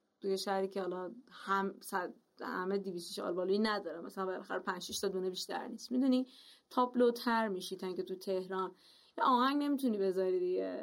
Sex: female